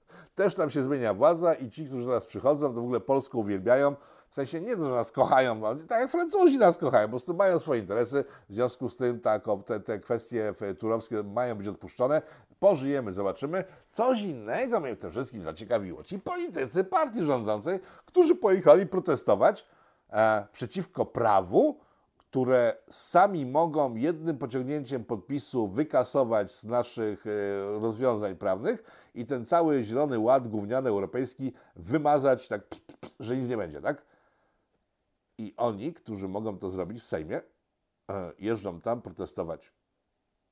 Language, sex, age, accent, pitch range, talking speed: Polish, male, 50-69, native, 110-150 Hz, 145 wpm